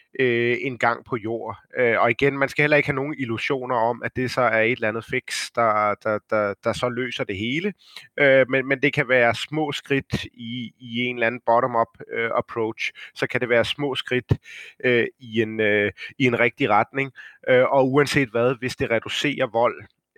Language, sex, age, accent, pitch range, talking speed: Danish, male, 30-49, native, 115-135 Hz, 180 wpm